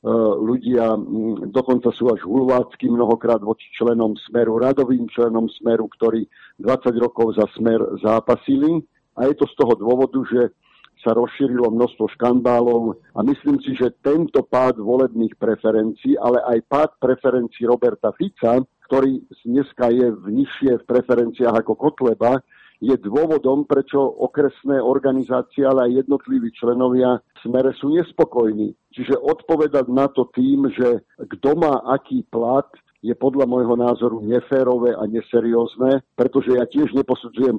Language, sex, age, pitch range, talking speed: Slovak, male, 50-69, 120-145 Hz, 135 wpm